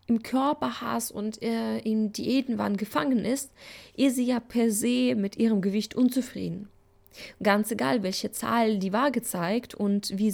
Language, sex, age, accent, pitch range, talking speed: German, female, 20-39, German, 205-260 Hz, 150 wpm